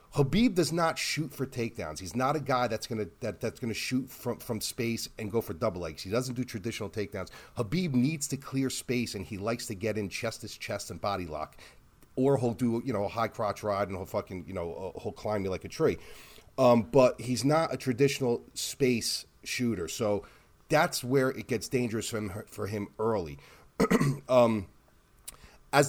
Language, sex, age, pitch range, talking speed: English, male, 30-49, 100-130 Hz, 205 wpm